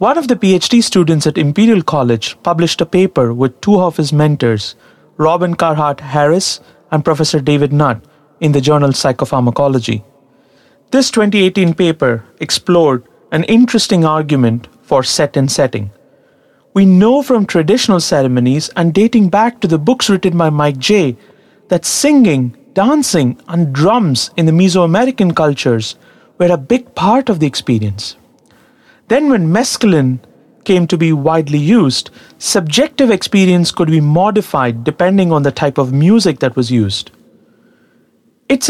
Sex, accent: male, Indian